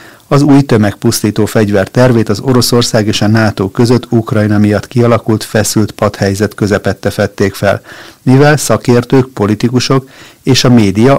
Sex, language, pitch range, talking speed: male, Hungarian, 105-125 Hz, 135 wpm